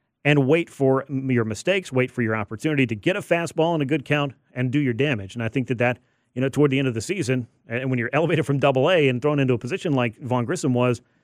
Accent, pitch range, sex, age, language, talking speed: American, 125-155 Hz, male, 40-59, English, 265 wpm